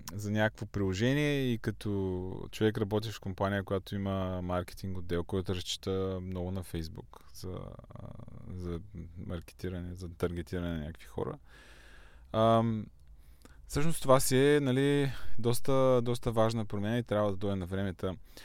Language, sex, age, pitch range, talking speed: Bulgarian, male, 20-39, 90-115 Hz, 130 wpm